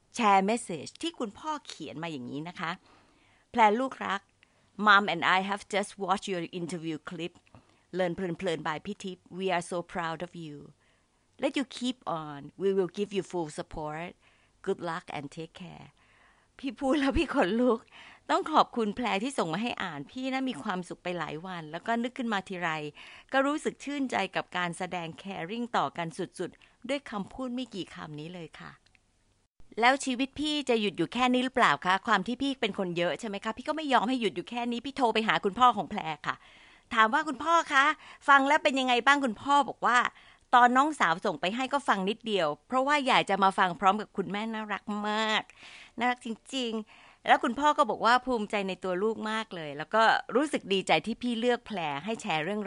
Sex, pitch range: female, 175-250 Hz